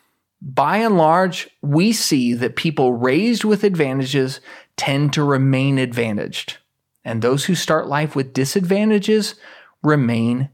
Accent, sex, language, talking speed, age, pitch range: American, male, English, 125 wpm, 30-49, 130-190 Hz